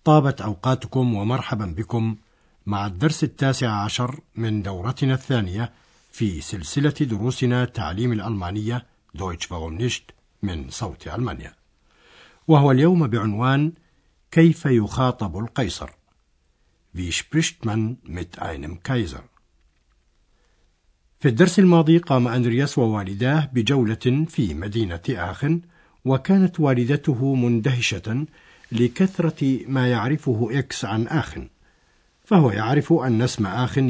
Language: Arabic